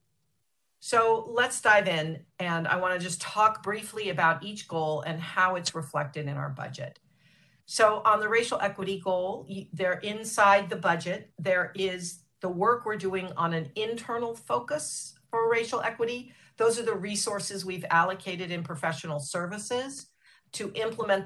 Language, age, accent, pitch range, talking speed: English, 50-69, American, 160-205 Hz, 155 wpm